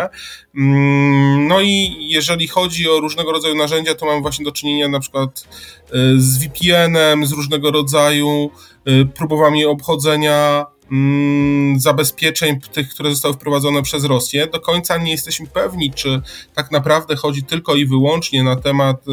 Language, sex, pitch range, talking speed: Polish, male, 140-155 Hz, 135 wpm